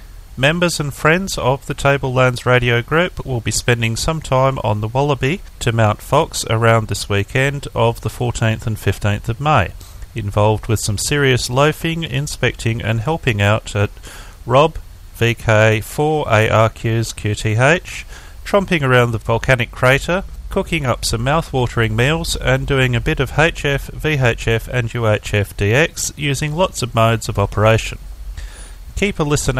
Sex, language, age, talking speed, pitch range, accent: male, English, 40-59, 145 wpm, 105-140 Hz, Australian